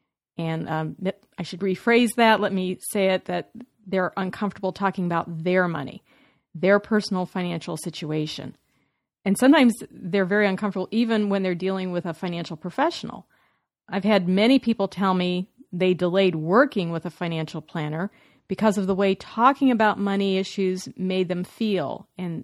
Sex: female